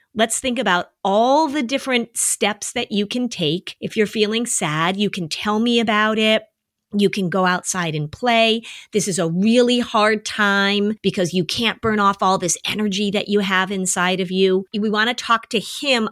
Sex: female